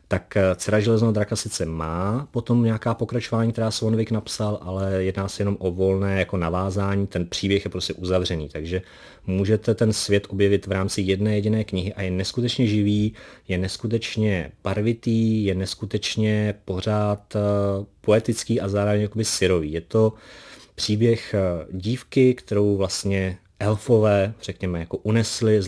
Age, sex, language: 30-49, male, Czech